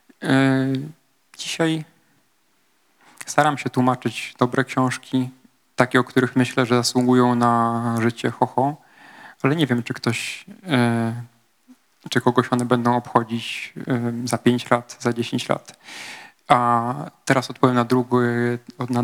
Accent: native